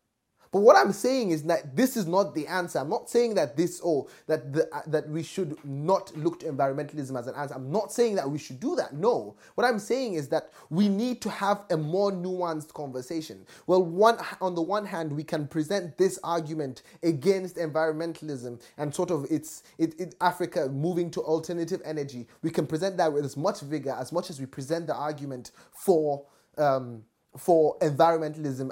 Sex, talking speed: male, 200 wpm